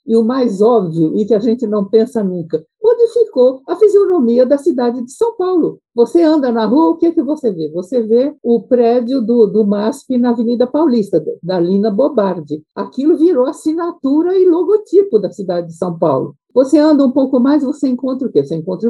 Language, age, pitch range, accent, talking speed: Portuguese, 60-79, 205-270 Hz, Brazilian, 195 wpm